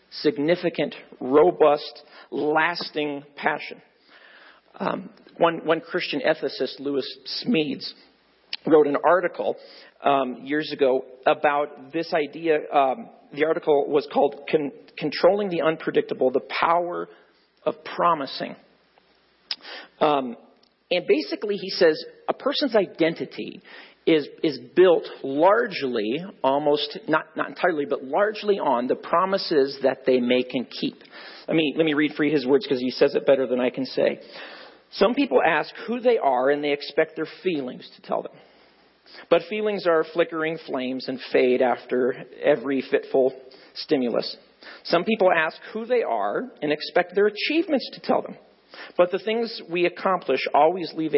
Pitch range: 145-215 Hz